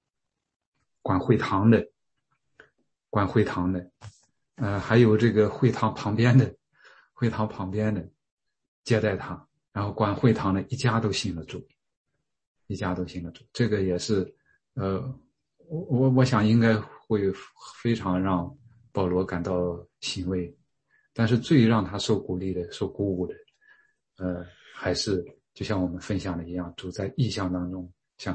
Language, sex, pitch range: English, male, 95-125 Hz